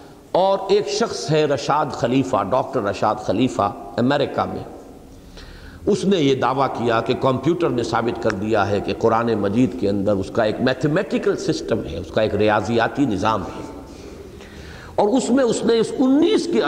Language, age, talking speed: English, 50-69, 170 wpm